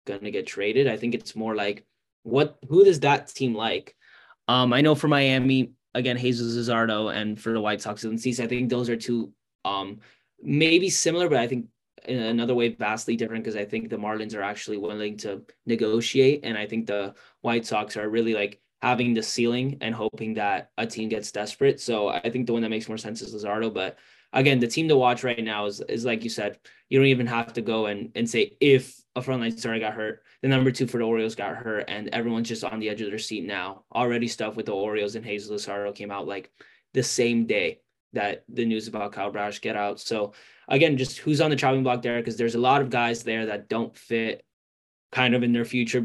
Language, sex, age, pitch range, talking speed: English, male, 20-39, 105-125 Hz, 230 wpm